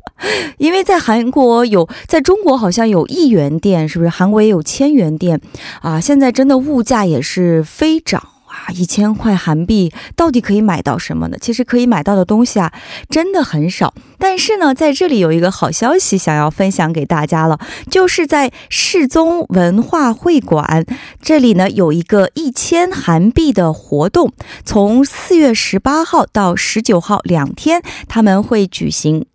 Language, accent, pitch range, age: Korean, Chinese, 175-285 Hz, 20-39